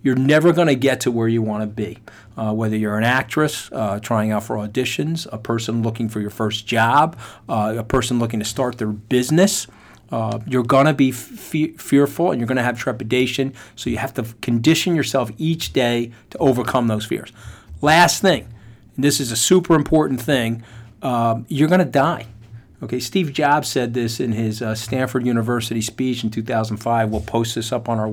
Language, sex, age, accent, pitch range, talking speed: English, male, 40-59, American, 110-140 Hz, 200 wpm